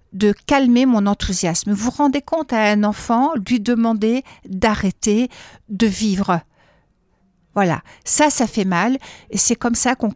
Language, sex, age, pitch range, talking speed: French, female, 60-79, 200-240 Hz, 155 wpm